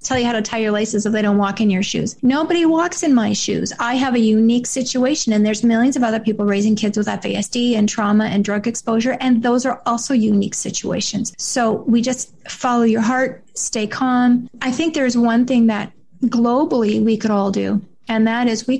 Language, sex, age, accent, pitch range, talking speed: English, female, 30-49, American, 210-240 Hz, 215 wpm